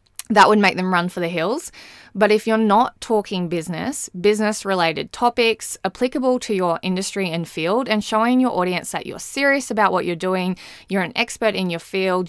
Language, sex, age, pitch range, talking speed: English, female, 20-39, 180-220 Hz, 195 wpm